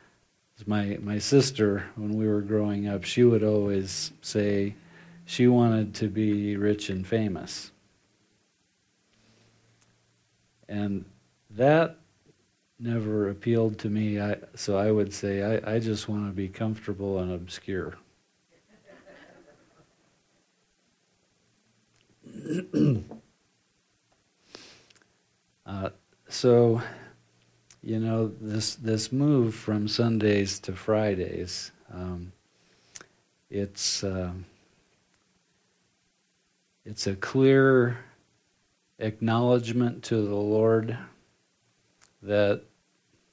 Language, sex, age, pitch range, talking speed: English, male, 50-69, 100-110 Hz, 85 wpm